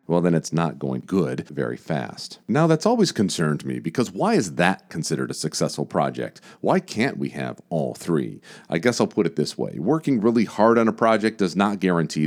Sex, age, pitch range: male, 40-59, 80-115 Hz